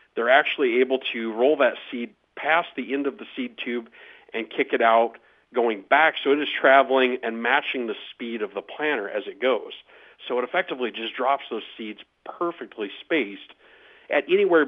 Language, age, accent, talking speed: English, 40-59, American, 185 wpm